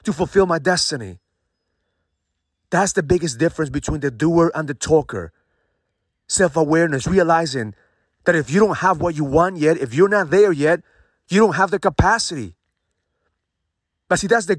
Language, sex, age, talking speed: English, male, 30-49, 160 wpm